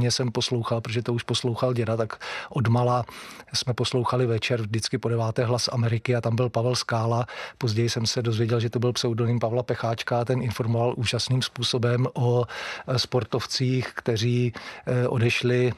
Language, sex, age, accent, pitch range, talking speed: Czech, male, 40-59, native, 115-125 Hz, 155 wpm